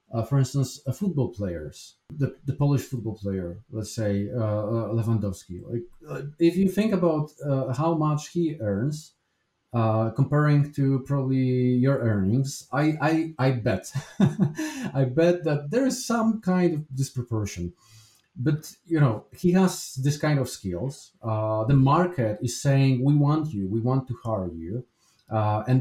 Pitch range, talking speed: 115-150 Hz, 160 wpm